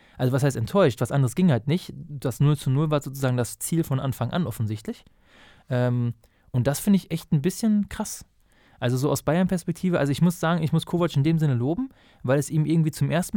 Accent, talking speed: German, 230 wpm